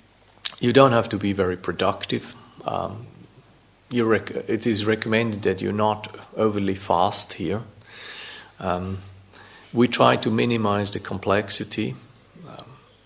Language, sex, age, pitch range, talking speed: English, male, 40-59, 100-120 Hz, 125 wpm